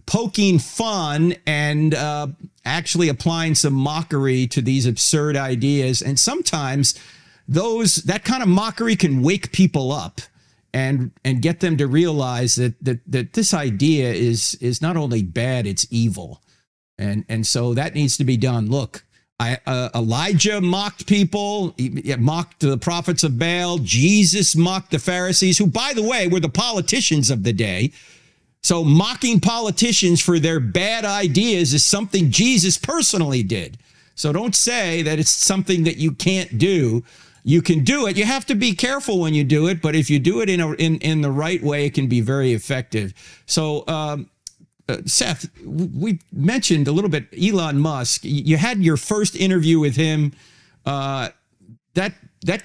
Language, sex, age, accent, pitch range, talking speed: English, male, 50-69, American, 130-185 Hz, 170 wpm